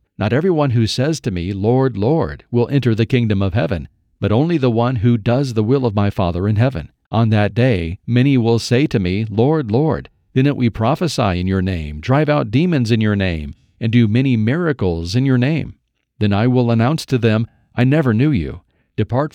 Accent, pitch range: American, 100-135 Hz